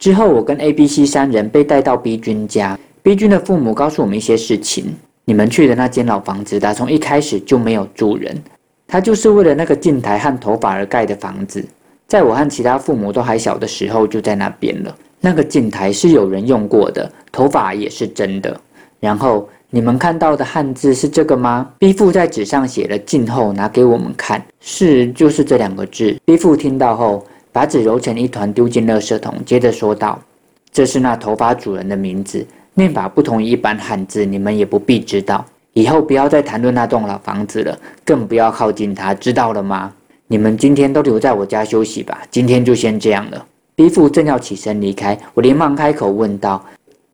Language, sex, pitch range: Chinese, male, 105-140 Hz